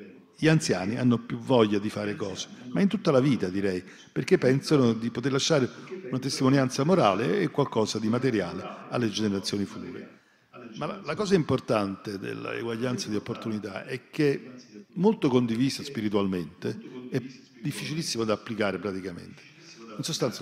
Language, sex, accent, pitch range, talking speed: Italian, male, native, 105-130 Hz, 145 wpm